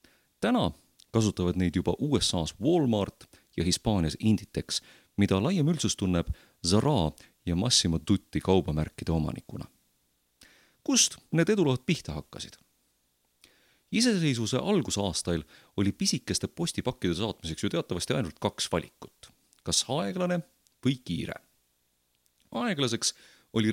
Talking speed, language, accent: 105 wpm, English, Finnish